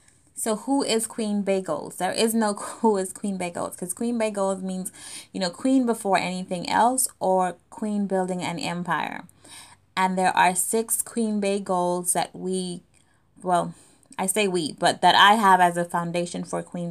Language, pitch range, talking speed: English, 175-195 Hz, 170 wpm